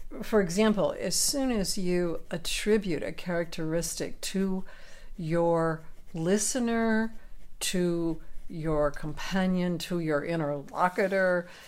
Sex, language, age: female, English, 60-79